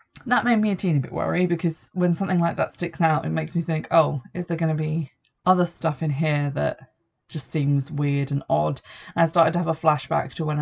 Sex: female